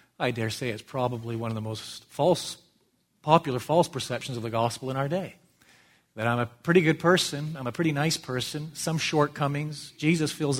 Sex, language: male, English